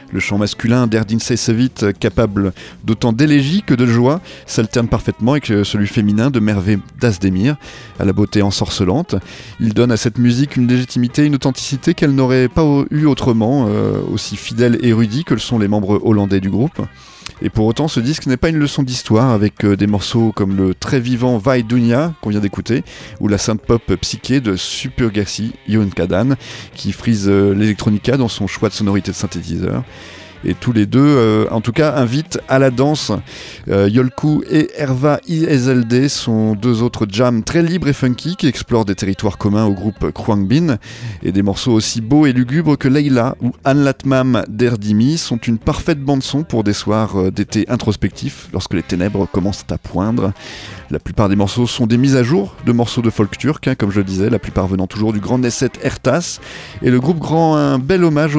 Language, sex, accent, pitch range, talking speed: French, male, French, 105-130 Hz, 195 wpm